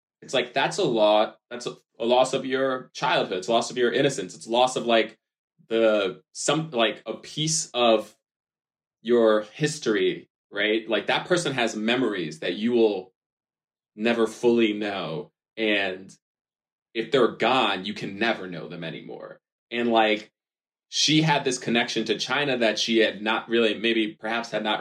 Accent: American